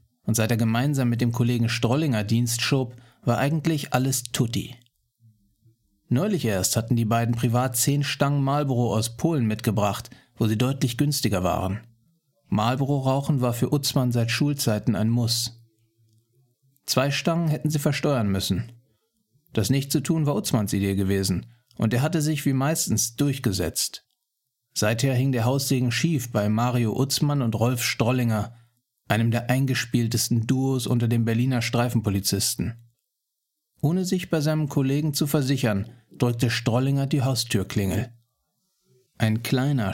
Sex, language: male, German